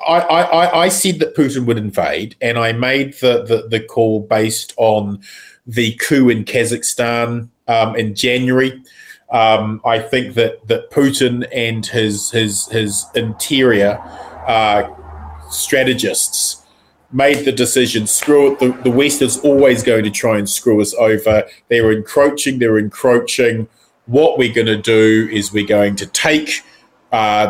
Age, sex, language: 30-49, male, English